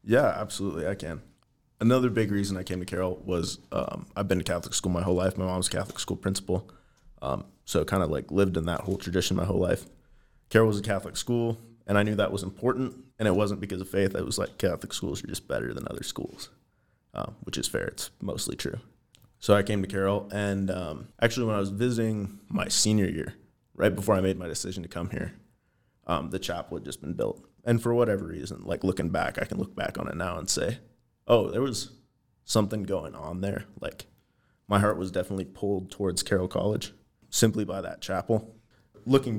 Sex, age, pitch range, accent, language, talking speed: male, 20-39, 95-115 Hz, American, English, 220 wpm